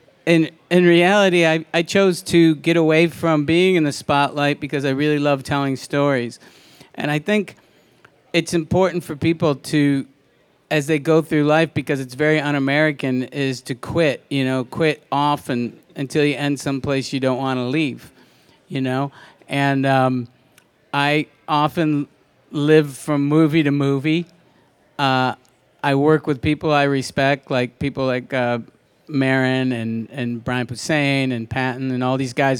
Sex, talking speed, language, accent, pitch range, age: male, 160 wpm, English, American, 135-160 Hz, 50-69